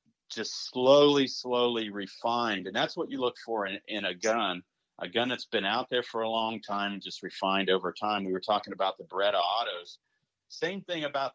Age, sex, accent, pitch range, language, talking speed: 40-59, male, American, 100-135 Hz, English, 205 wpm